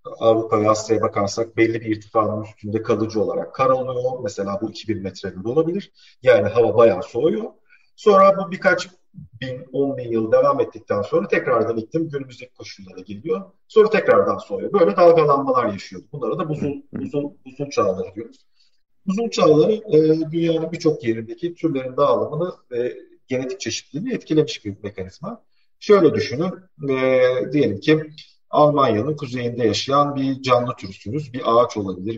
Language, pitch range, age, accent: Turkish, 115-180 Hz, 40-59, native